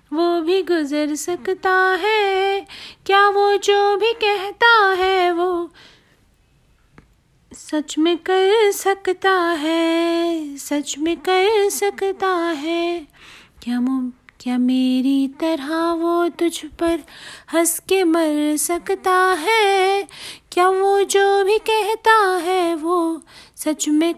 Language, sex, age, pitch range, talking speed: Hindi, female, 30-49, 330-380 Hz, 105 wpm